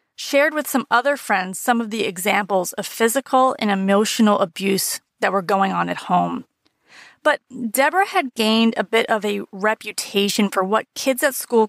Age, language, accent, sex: 30-49, English, American, female